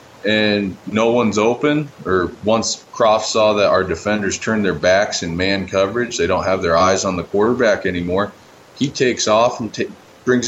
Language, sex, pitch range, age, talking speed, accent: English, male, 95-110 Hz, 20-39, 180 wpm, American